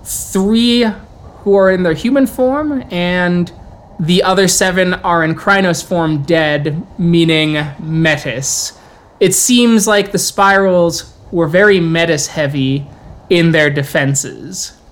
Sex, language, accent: male, English, American